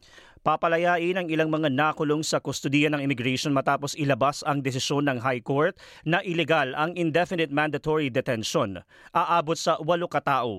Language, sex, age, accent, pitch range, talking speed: Filipino, male, 40-59, native, 110-165 Hz, 140 wpm